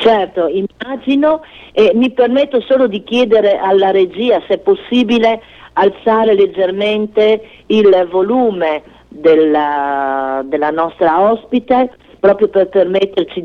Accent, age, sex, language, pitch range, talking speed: native, 50-69, female, Italian, 175-215 Hz, 105 wpm